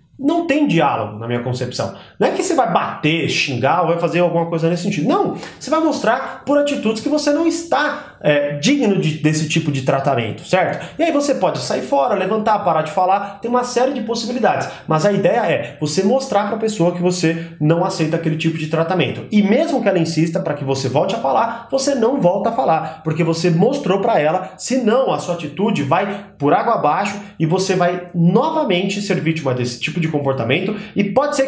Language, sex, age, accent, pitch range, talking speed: Portuguese, male, 30-49, Brazilian, 155-215 Hz, 215 wpm